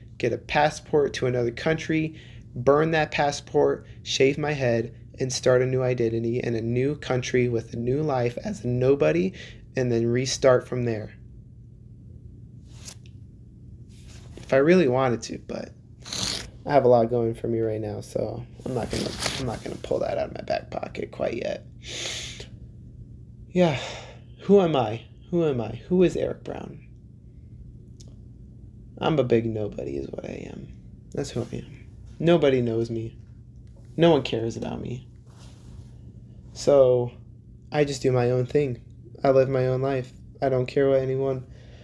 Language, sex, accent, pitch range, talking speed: English, male, American, 115-135 Hz, 160 wpm